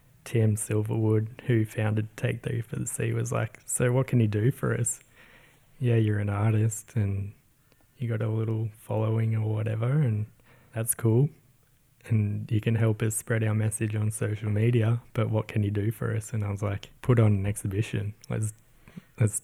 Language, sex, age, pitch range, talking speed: English, male, 10-29, 105-120 Hz, 190 wpm